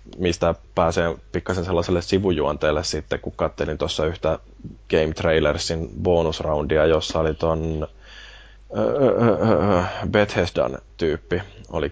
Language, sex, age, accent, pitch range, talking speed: Finnish, male, 20-39, native, 85-95 Hz, 105 wpm